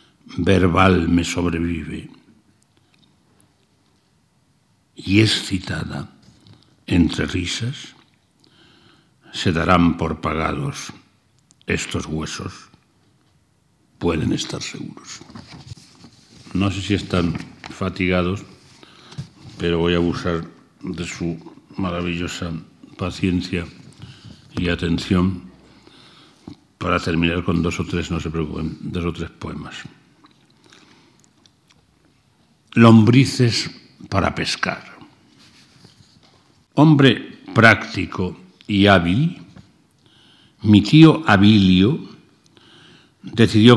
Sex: male